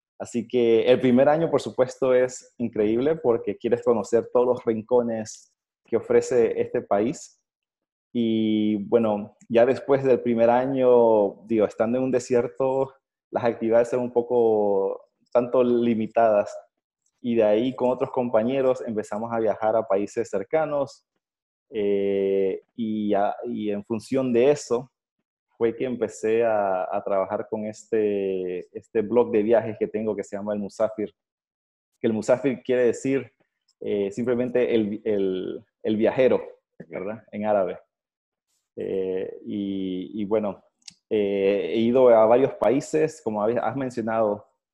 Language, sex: Spanish, male